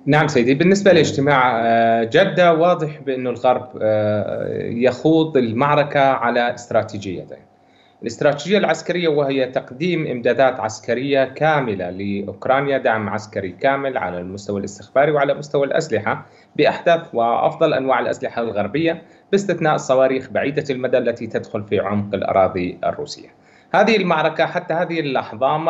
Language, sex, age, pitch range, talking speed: Arabic, male, 30-49, 120-170 Hz, 115 wpm